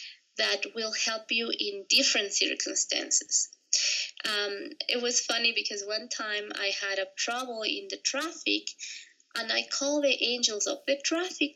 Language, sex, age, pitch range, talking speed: English, female, 20-39, 210-315 Hz, 150 wpm